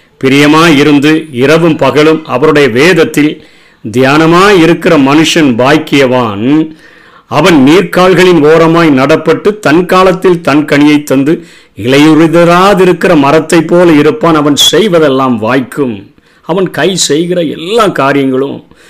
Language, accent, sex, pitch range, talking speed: Tamil, native, male, 135-170 Hz, 95 wpm